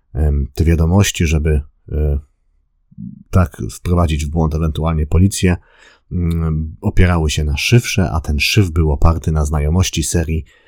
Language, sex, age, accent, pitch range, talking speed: Polish, male, 40-59, native, 80-95 Hz, 120 wpm